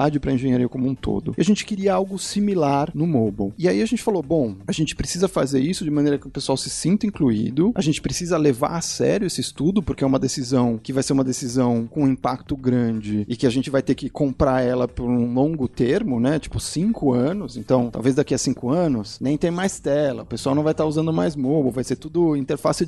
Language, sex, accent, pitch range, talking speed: Portuguese, male, Brazilian, 130-180 Hz, 240 wpm